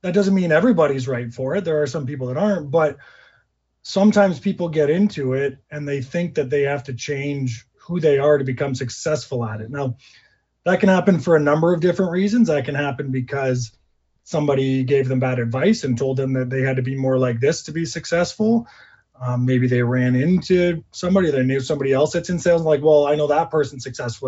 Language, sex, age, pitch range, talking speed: English, male, 30-49, 130-175 Hz, 215 wpm